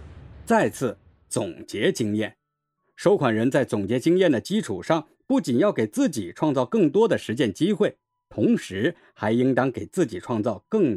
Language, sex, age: Chinese, male, 50-69